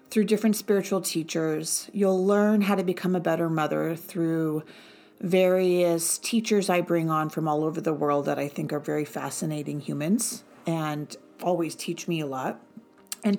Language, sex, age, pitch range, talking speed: English, female, 40-59, 165-210 Hz, 165 wpm